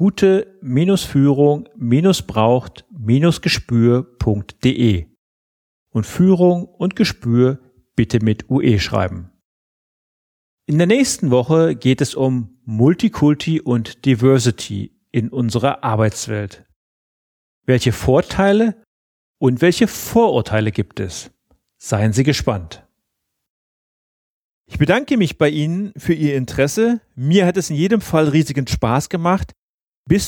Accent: German